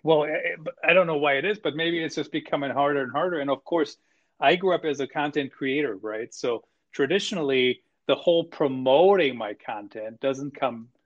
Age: 40-59